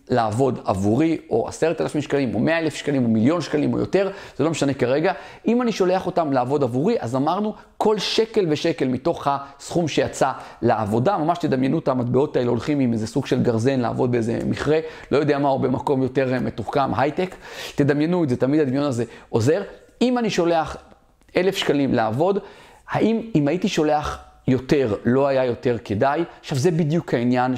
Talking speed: 180 wpm